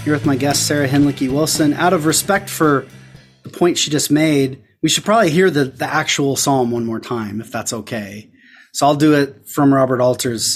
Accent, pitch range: American, 115-155 Hz